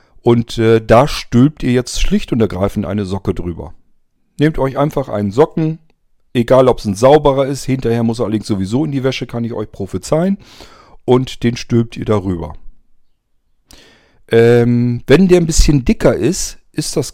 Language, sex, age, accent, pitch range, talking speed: German, male, 50-69, German, 115-145 Hz, 170 wpm